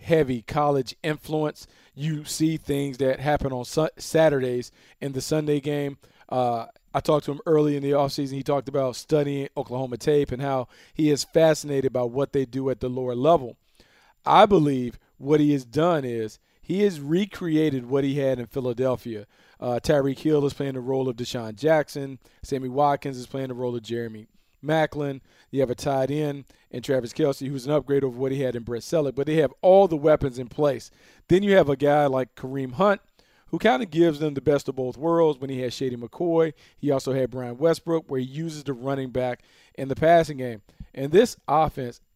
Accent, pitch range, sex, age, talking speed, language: American, 130-155 Hz, male, 40-59, 205 wpm, English